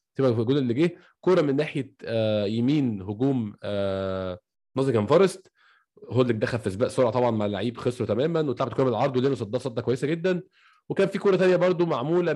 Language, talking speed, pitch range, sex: Arabic, 190 wpm, 115-150 Hz, male